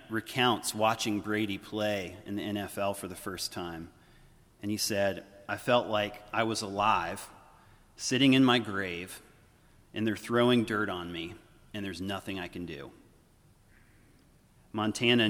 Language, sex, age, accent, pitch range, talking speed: English, male, 40-59, American, 100-120 Hz, 145 wpm